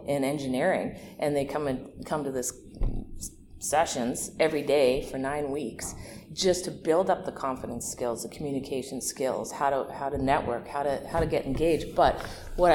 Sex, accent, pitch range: female, American, 135-170 Hz